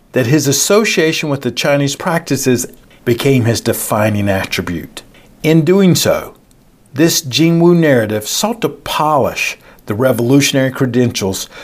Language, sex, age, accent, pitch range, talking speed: English, male, 50-69, American, 120-155 Hz, 120 wpm